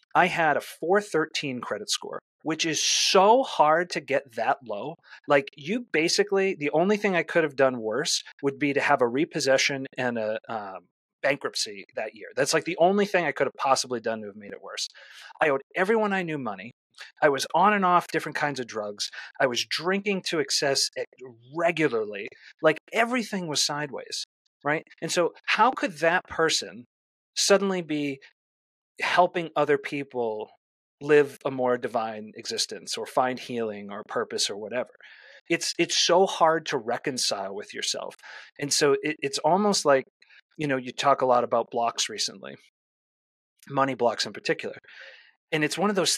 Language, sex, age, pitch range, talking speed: English, male, 30-49, 130-190 Hz, 170 wpm